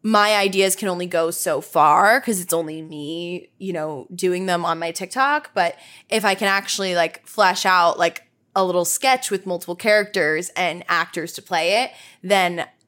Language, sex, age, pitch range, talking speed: English, female, 10-29, 170-200 Hz, 180 wpm